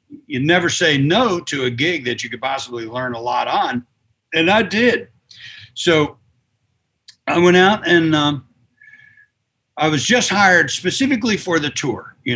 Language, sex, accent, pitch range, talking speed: English, male, American, 125-170 Hz, 160 wpm